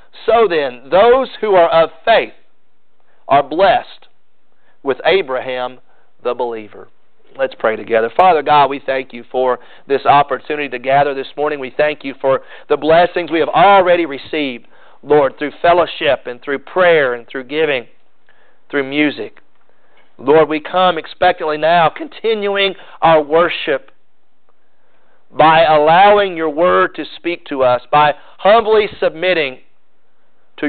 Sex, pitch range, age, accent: male, 135-175 Hz, 40-59, American